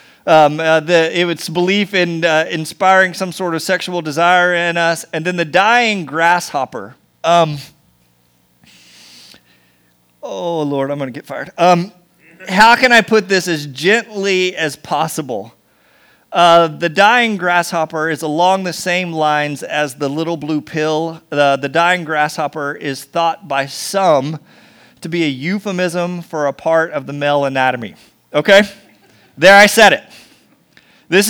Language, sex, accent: English, male, American